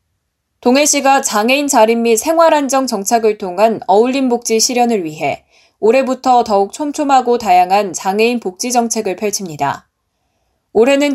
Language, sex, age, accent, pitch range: Korean, female, 10-29, native, 210-260 Hz